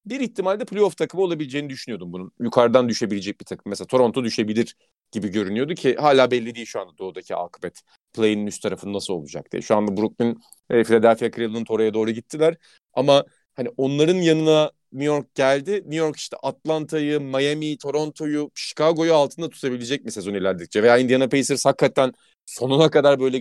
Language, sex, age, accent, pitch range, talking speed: Turkish, male, 40-59, native, 120-160 Hz, 165 wpm